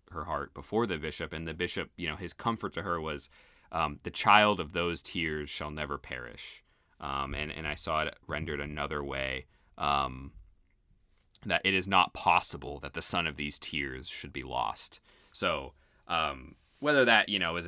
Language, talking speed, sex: English, 185 wpm, male